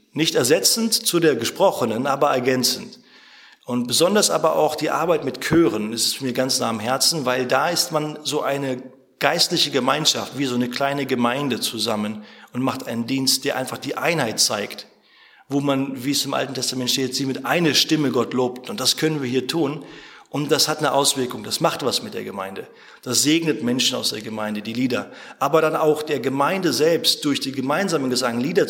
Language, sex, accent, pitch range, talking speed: German, male, German, 125-150 Hz, 195 wpm